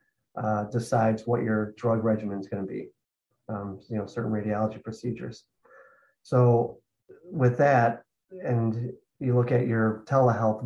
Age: 30-49